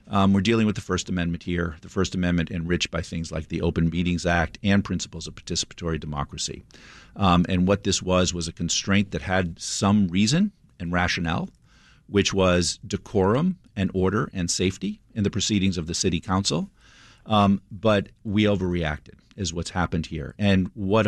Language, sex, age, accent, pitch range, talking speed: English, male, 50-69, American, 85-105 Hz, 175 wpm